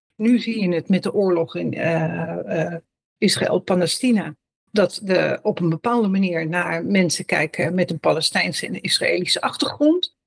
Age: 60-79